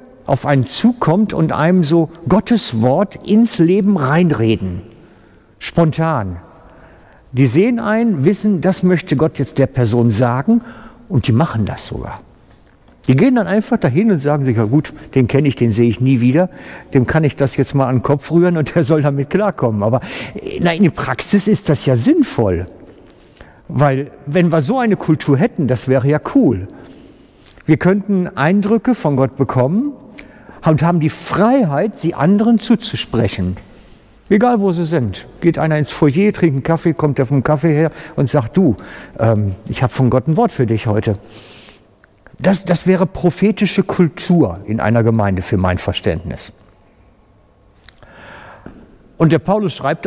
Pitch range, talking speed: 125-190 Hz, 165 wpm